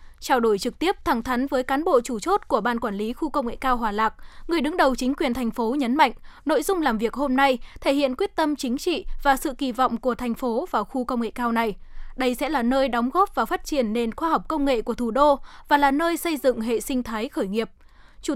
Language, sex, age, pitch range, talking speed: Vietnamese, female, 10-29, 235-290 Hz, 270 wpm